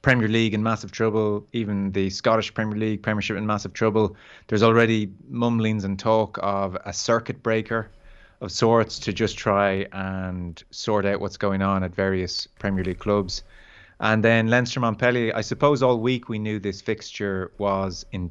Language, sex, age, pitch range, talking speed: English, male, 20-39, 95-110 Hz, 175 wpm